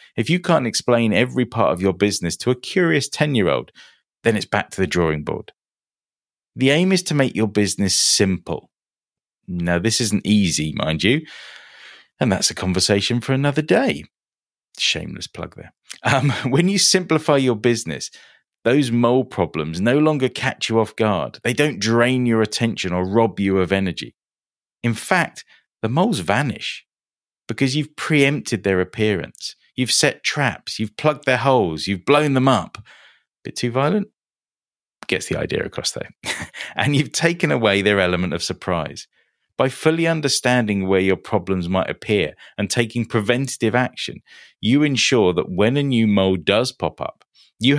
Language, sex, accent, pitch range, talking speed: English, male, British, 95-135 Hz, 165 wpm